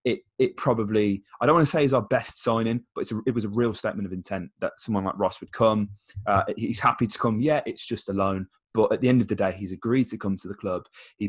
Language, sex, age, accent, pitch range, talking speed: English, male, 20-39, British, 100-125 Hz, 275 wpm